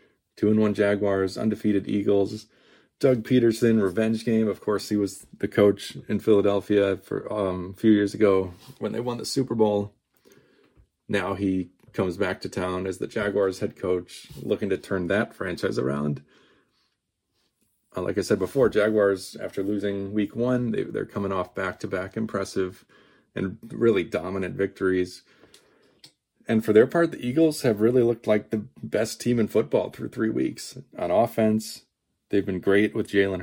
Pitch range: 95-110 Hz